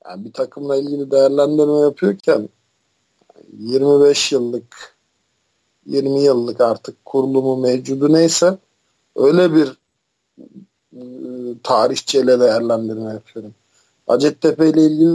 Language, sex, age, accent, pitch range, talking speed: Turkish, male, 50-69, native, 135-160 Hz, 90 wpm